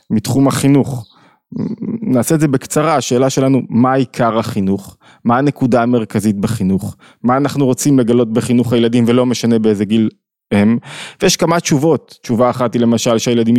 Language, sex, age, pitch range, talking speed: Hebrew, male, 20-39, 115-140 Hz, 150 wpm